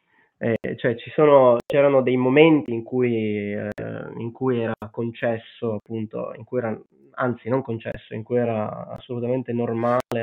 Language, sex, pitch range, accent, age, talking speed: Italian, male, 115-130 Hz, native, 20-39, 155 wpm